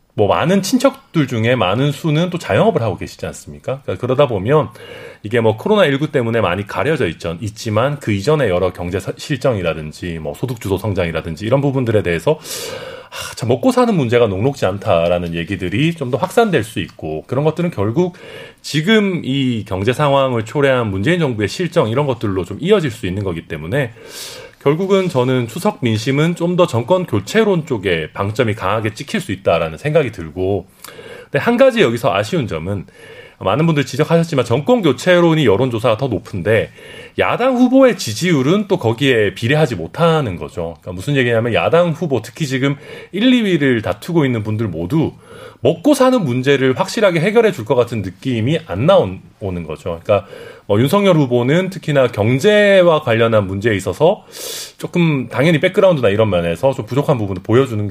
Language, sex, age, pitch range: Korean, male, 30-49, 110-180 Hz